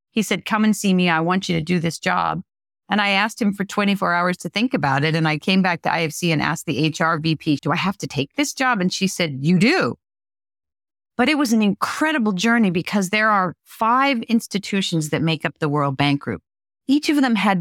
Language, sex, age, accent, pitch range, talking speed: English, female, 40-59, American, 155-210 Hz, 235 wpm